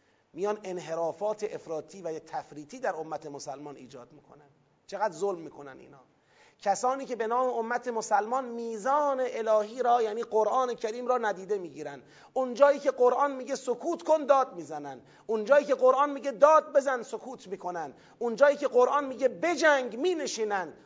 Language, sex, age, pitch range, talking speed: Persian, male, 30-49, 190-265 Hz, 145 wpm